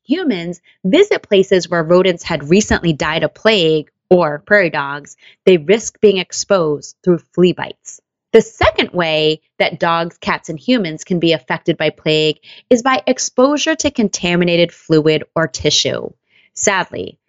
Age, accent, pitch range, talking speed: 20-39, American, 160-210 Hz, 145 wpm